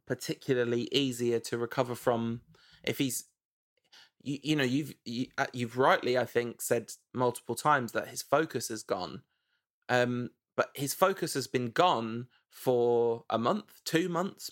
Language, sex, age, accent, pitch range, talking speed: English, male, 20-39, British, 120-145 Hz, 150 wpm